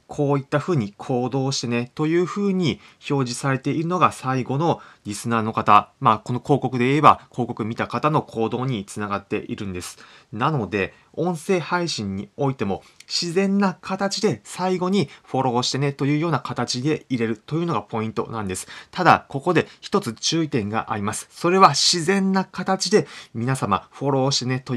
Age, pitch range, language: 30-49, 105-150 Hz, Japanese